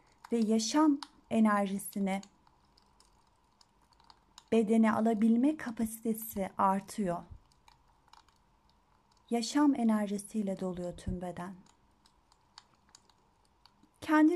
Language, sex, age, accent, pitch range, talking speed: Turkish, female, 30-49, native, 205-265 Hz, 55 wpm